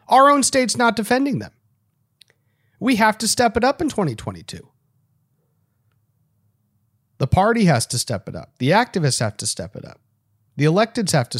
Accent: American